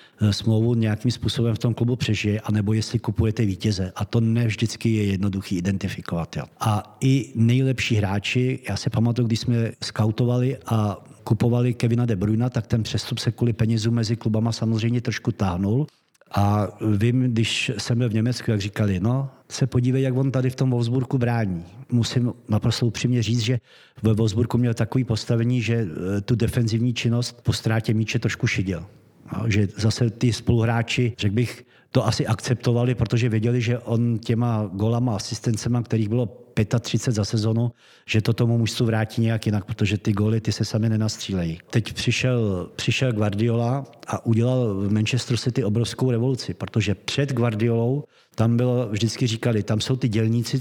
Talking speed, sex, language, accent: 165 wpm, male, Czech, native